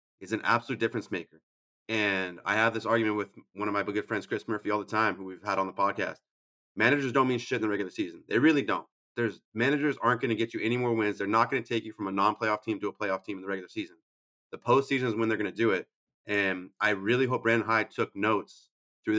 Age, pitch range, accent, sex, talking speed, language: 30-49, 100-130 Hz, American, male, 265 wpm, English